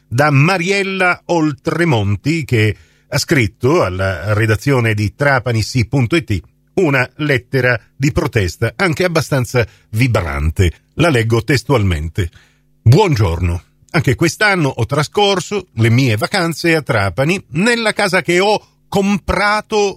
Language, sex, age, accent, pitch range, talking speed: Italian, male, 50-69, native, 120-185 Hz, 105 wpm